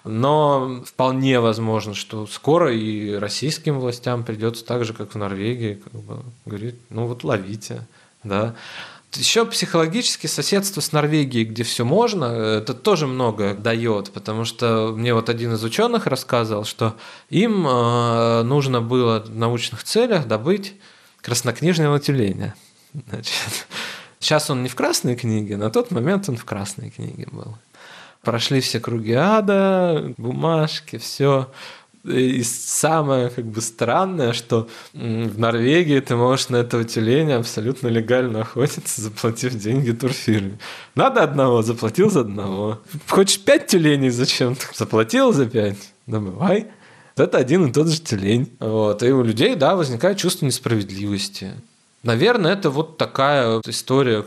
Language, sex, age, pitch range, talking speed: Russian, male, 20-39, 115-150 Hz, 135 wpm